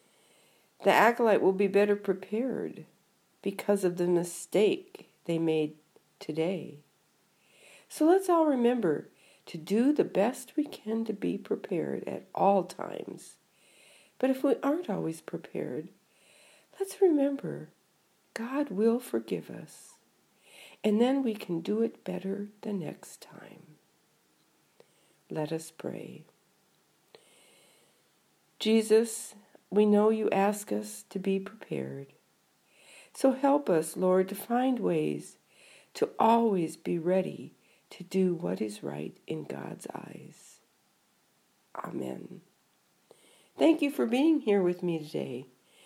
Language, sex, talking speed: English, female, 120 wpm